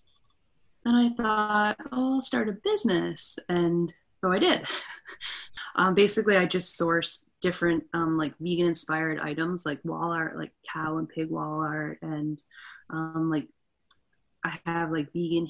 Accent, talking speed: American, 150 wpm